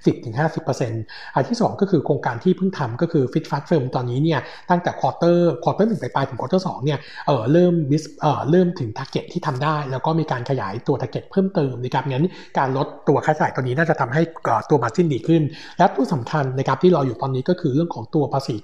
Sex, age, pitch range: male, 60-79, 130-160 Hz